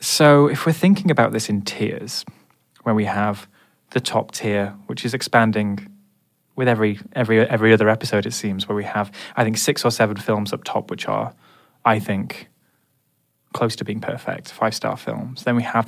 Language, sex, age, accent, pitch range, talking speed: English, male, 20-39, British, 105-120 Hz, 185 wpm